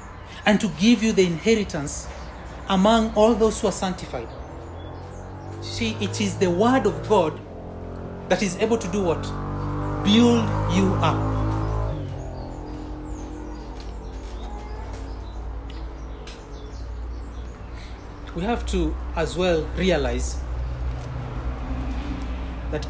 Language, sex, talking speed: English, male, 90 wpm